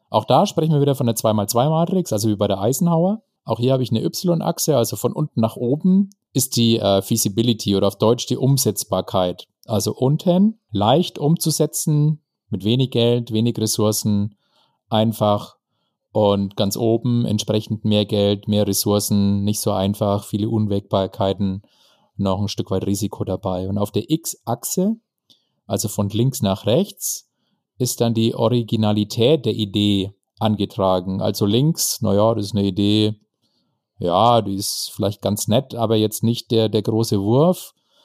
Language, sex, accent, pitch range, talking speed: German, male, German, 105-130 Hz, 155 wpm